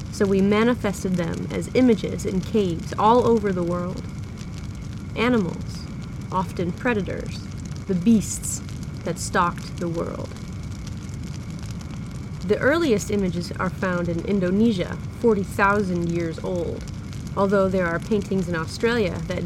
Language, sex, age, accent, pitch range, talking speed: English, female, 20-39, American, 180-220 Hz, 115 wpm